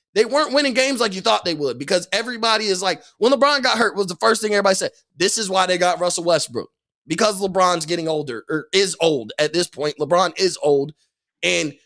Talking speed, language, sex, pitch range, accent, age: 225 wpm, English, male, 175-220 Hz, American, 20-39